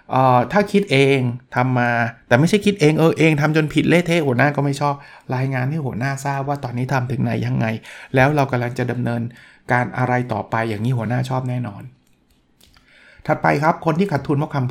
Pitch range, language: 120-155 Hz, Thai